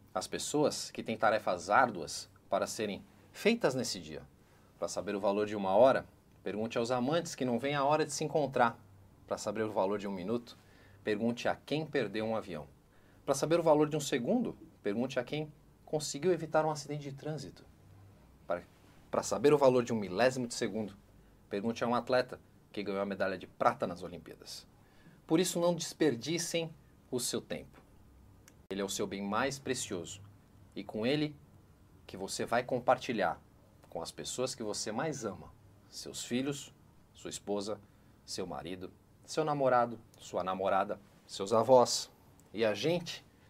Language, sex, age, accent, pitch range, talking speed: Portuguese, male, 40-59, Brazilian, 100-140 Hz, 170 wpm